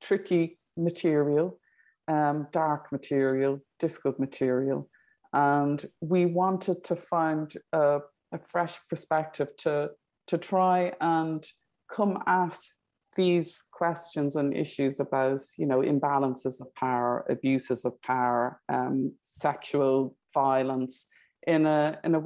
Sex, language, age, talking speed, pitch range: female, English, 50-69, 110 wpm, 140-170 Hz